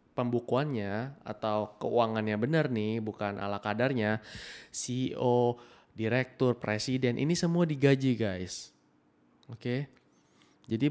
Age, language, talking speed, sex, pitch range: 20-39, Indonesian, 100 wpm, male, 105-130 Hz